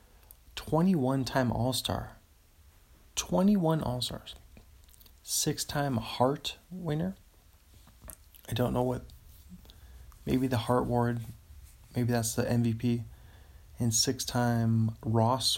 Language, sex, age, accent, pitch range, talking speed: English, male, 20-39, American, 95-135 Hz, 120 wpm